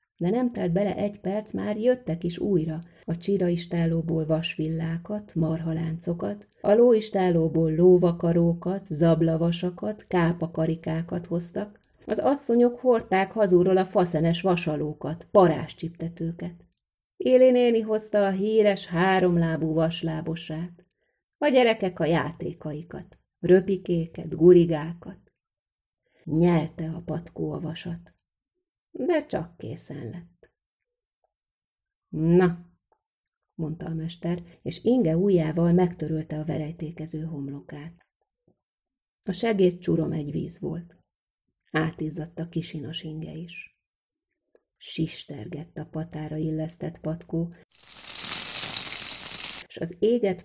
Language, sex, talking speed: Hungarian, female, 95 wpm